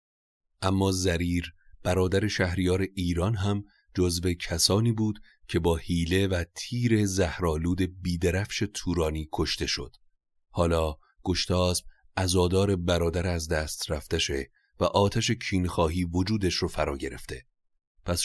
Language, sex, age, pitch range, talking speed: Persian, male, 30-49, 85-110 Hz, 110 wpm